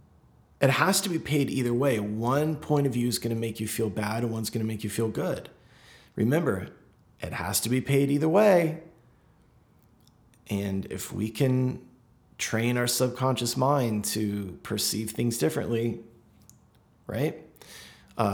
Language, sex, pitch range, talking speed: English, male, 100-120 Hz, 150 wpm